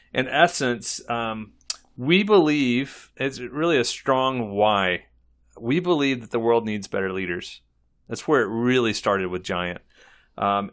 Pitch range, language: 100-135 Hz, English